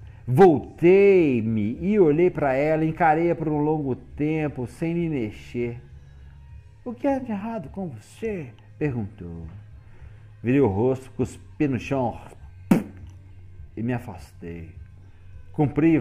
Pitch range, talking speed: 100-135 Hz, 120 wpm